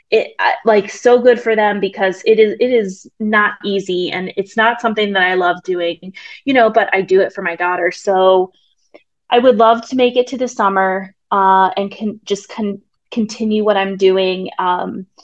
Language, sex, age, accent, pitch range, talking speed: English, female, 20-39, American, 190-235 Hz, 195 wpm